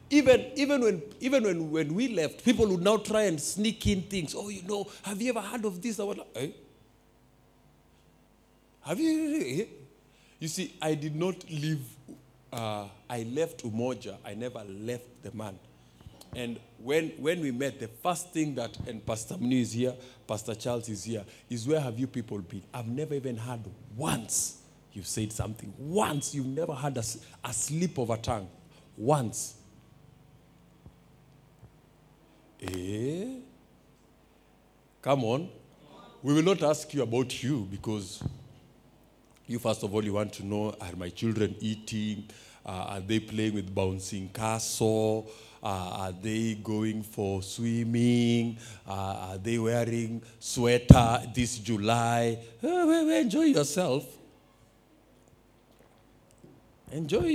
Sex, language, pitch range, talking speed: male, English, 110-160 Hz, 140 wpm